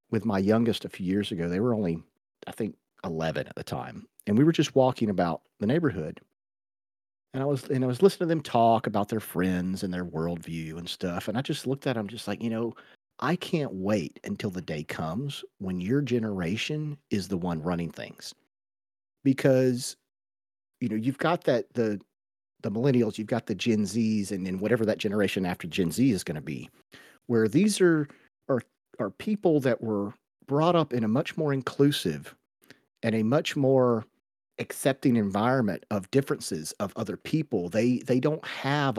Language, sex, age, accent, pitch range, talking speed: English, male, 40-59, American, 100-140 Hz, 190 wpm